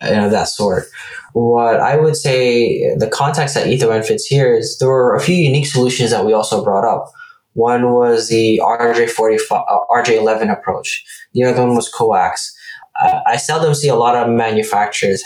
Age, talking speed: 20-39, 185 wpm